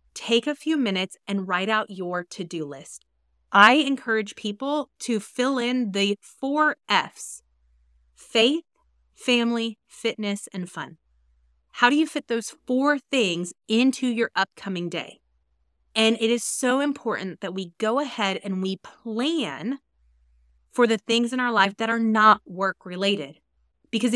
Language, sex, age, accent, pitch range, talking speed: English, female, 30-49, American, 185-245 Hz, 145 wpm